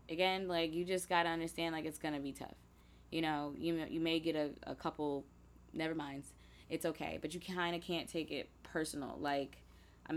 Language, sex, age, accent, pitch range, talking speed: English, female, 20-39, American, 150-195 Hz, 220 wpm